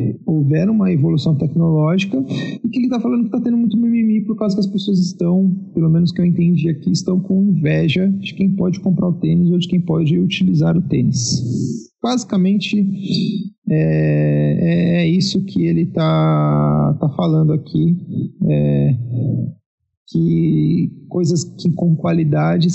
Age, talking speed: 40-59, 150 wpm